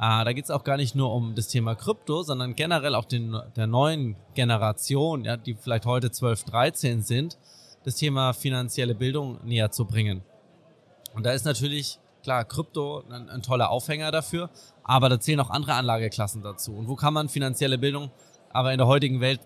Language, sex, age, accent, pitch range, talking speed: German, male, 20-39, German, 120-145 Hz, 190 wpm